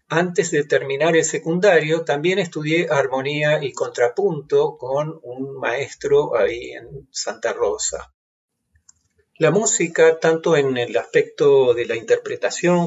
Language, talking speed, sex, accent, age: Spanish, 120 wpm, male, Argentinian, 40-59